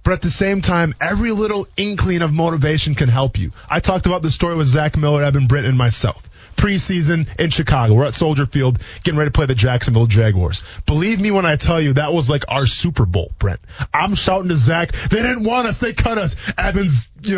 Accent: American